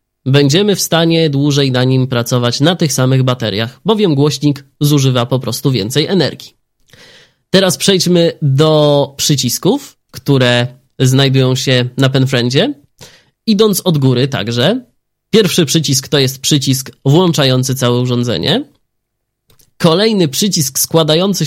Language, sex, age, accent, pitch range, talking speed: Polish, male, 20-39, native, 130-155 Hz, 115 wpm